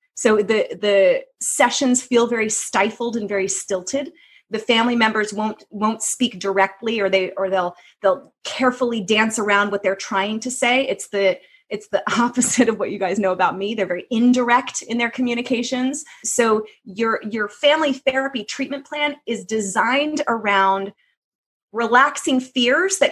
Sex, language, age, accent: female, English, 30-49, American